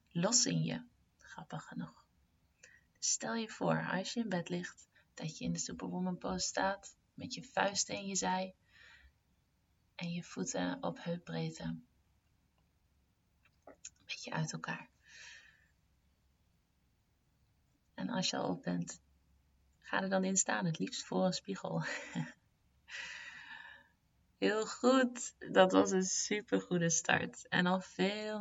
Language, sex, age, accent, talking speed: Dutch, female, 20-39, Dutch, 130 wpm